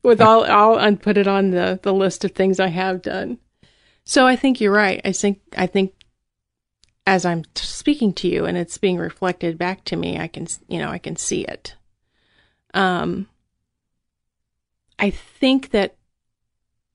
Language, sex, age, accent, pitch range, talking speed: English, female, 30-49, American, 180-220 Hz, 170 wpm